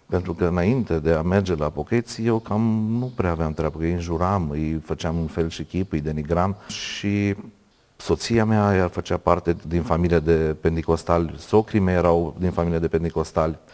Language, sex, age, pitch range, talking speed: Romanian, male, 40-59, 85-105 Hz, 185 wpm